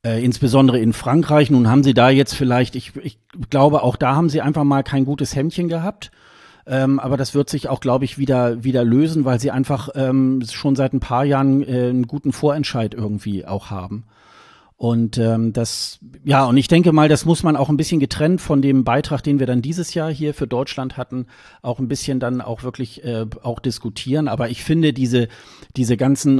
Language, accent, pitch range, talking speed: German, German, 120-145 Hz, 210 wpm